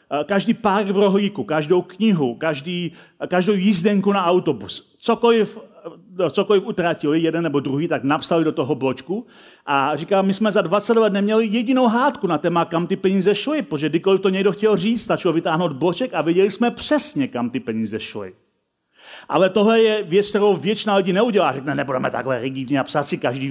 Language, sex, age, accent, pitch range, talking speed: Czech, male, 40-59, native, 165-215 Hz, 180 wpm